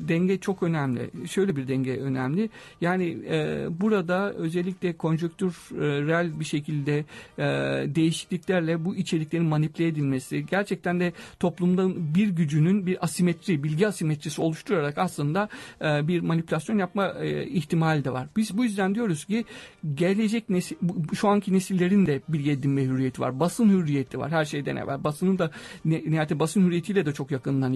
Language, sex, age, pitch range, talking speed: Turkish, male, 50-69, 155-195 Hz, 150 wpm